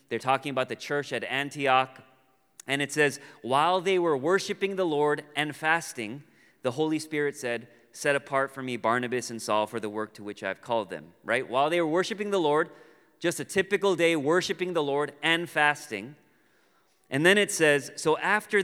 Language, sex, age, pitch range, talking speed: English, male, 30-49, 130-170 Hz, 190 wpm